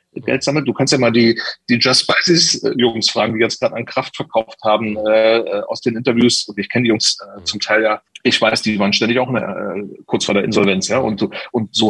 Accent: German